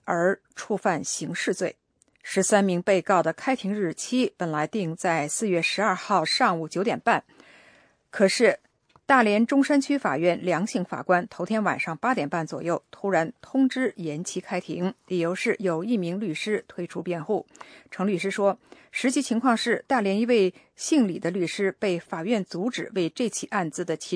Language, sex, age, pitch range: English, female, 50-69, 175-235 Hz